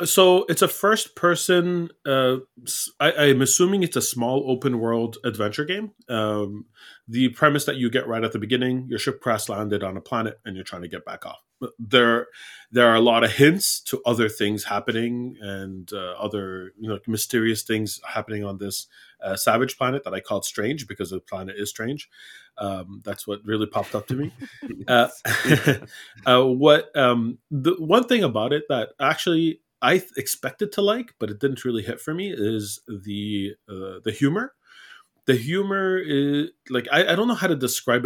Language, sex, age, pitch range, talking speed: English, male, 30-49, 105-160 Hz, 185 wpm